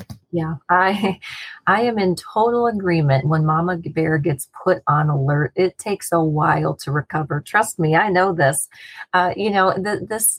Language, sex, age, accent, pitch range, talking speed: English, female, 30-49, American, 145-180 Hz, 165 wpm